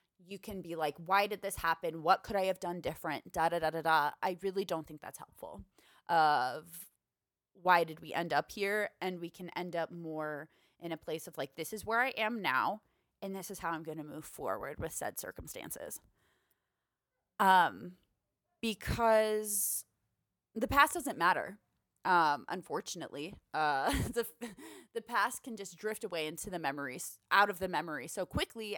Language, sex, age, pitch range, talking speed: English, female, 20-39, 160-215 Hz, 170 wpm